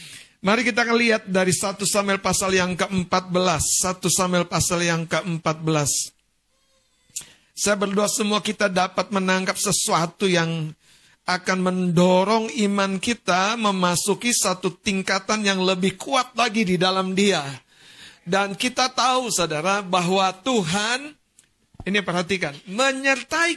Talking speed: 115 wpm